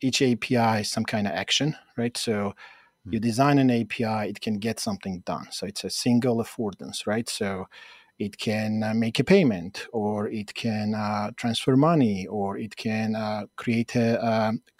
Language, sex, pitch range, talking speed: English, male, 105-120 Hz, 175 wpm